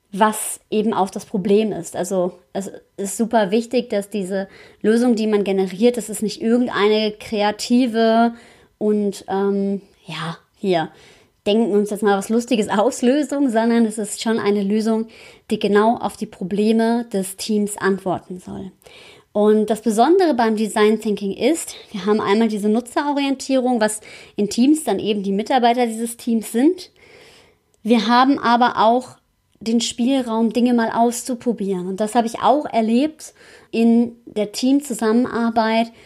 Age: 30-49